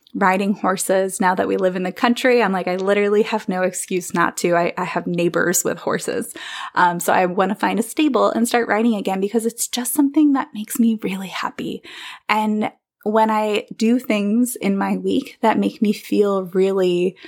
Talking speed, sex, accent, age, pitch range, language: 200 wpm, female, American, 20-39, 185-225 Hz, English